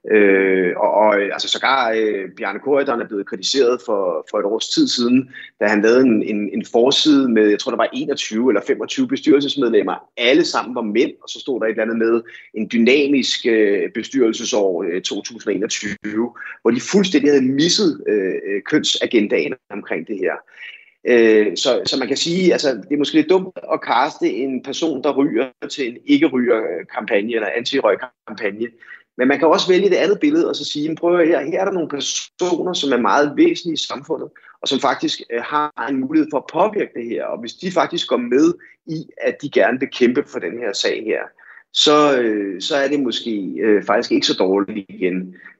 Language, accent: Danish, native